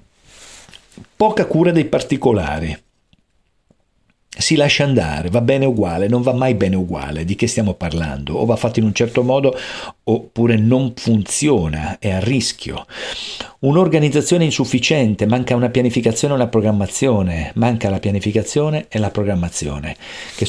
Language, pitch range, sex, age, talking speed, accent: Italian, 95-125 Hz, male, 50-69, 140 wpm, native